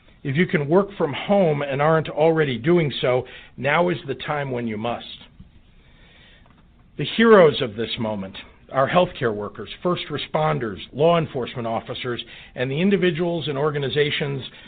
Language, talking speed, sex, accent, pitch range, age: English, 145 wpm, male, American, 125-165 Hz, 50-69